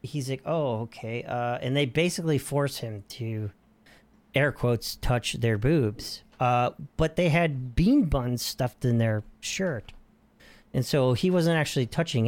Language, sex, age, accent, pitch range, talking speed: English, male, 40-59, American, 120-180 Hz, 155 wpm